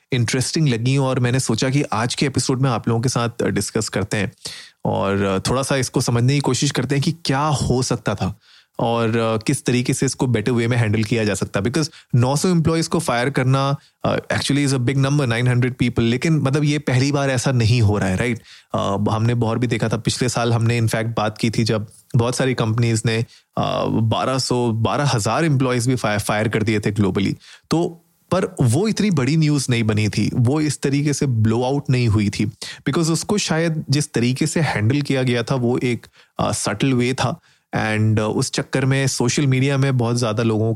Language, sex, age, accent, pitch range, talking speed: Hindi, male, 30-49, native, 110-140 Hz, 205 wpm